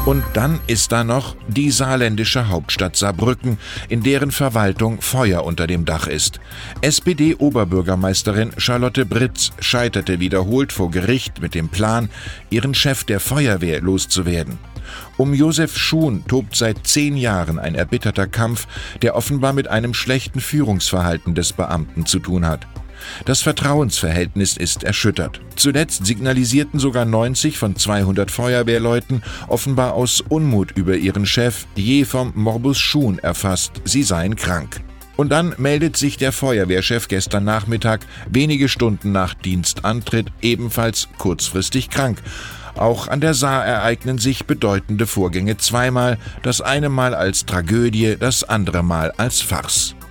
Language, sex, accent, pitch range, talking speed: German, male, German, 95-130 Hz, 135 wpm